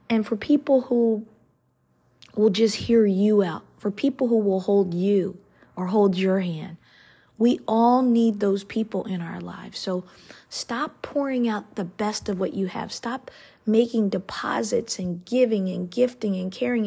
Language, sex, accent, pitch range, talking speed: English, female, American, 190-230 Hz, 165 wpm